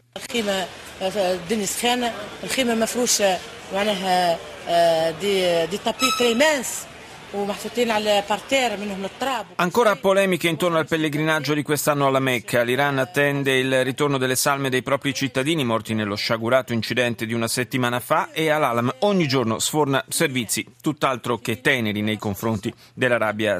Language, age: Italian, 40-59